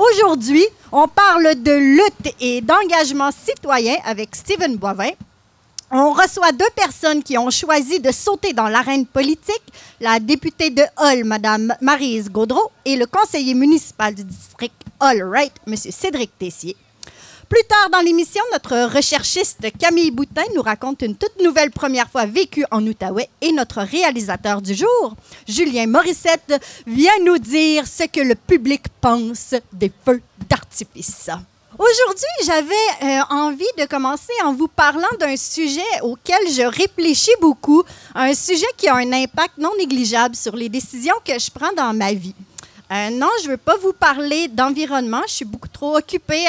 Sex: female